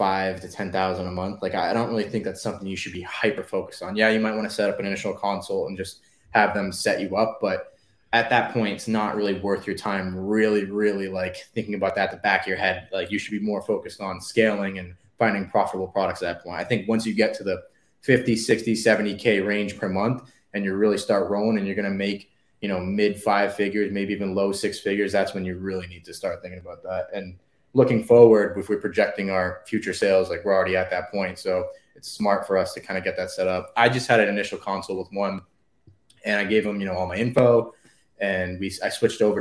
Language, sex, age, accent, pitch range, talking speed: English, male, 20-39, American, 95-115 Hz, 250 wpm